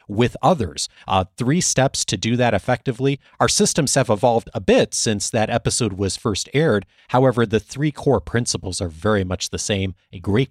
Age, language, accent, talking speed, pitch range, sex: 30-49, English, American, 190 wpm, 105-150 Hz, male